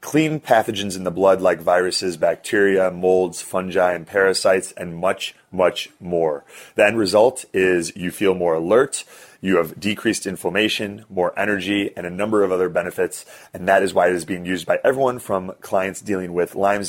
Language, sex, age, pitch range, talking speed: English, male, 30-49, 90-100 Hz, 180 wpm